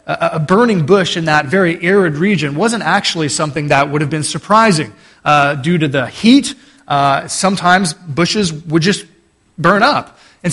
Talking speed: 165 wpm